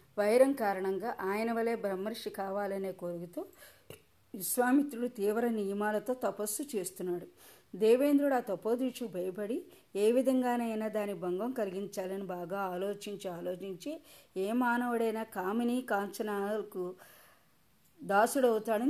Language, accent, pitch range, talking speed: Telugu, native, 195-240 Hz, 90 wpm